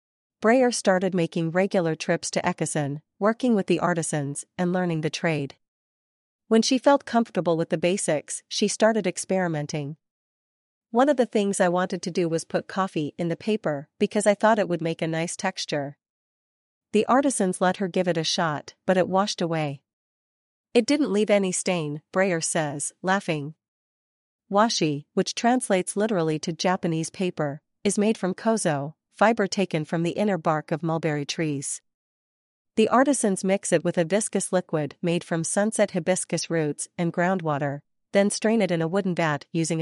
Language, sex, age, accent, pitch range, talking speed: English, female, 40-59, American, 160-200 Hz, 165 wpm